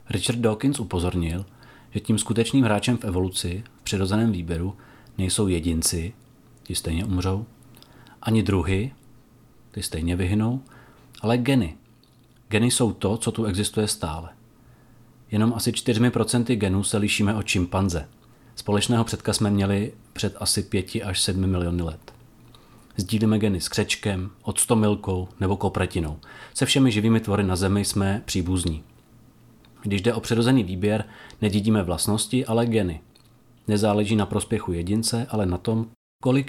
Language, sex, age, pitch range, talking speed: Czech, male, 30-49, 95-115 Hz, 135 wpm